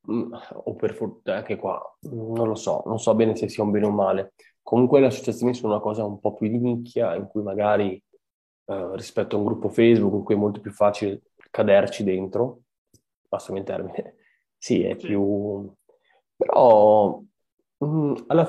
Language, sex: Italian, male